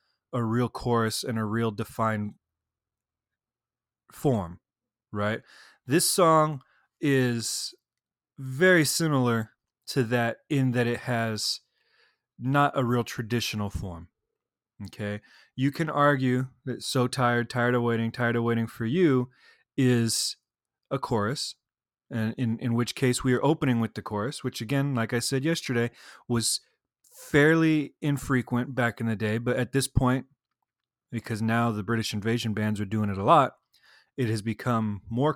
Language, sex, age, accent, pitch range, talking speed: English, male, 20-39, American, 115-140 Hz, 145 wpm